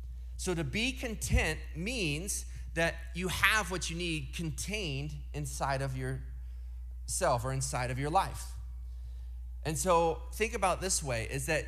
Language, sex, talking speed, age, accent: English, male, 145 wpm, 30-49, American